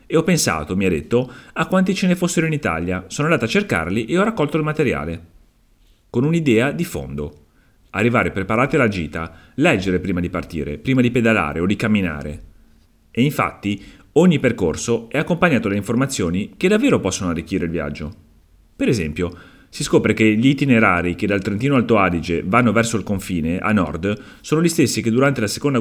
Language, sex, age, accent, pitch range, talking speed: Italian, male, 30-49, native, 90-125 Hz, 185 wpm